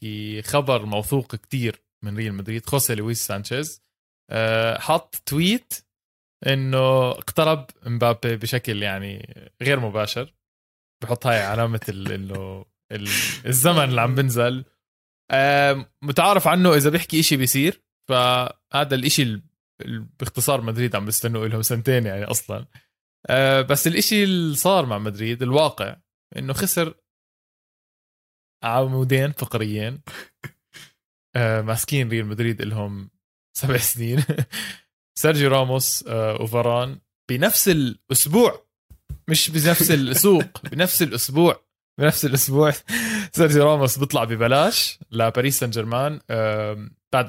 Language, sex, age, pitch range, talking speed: Arabic, male, 20-39, 110-145 Hz, 100 wpm